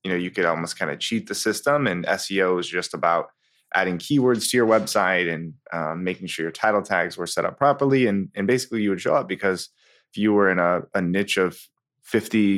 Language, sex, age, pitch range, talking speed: English, male, 20-39, 90-110 Hz, 230 wpm